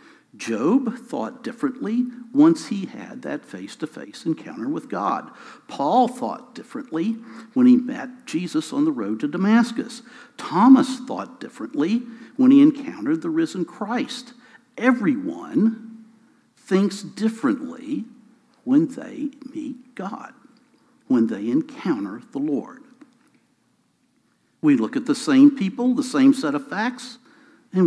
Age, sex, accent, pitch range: 60-79, male, American, 240-290 Hz